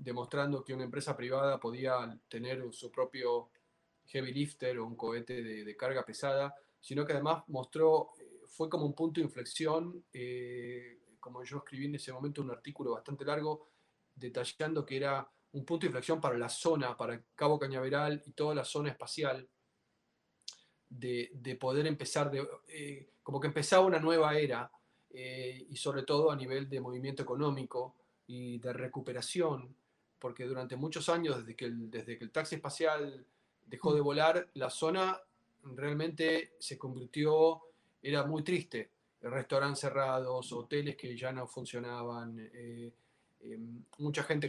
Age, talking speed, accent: 20-39, 155 wpm, Argentinian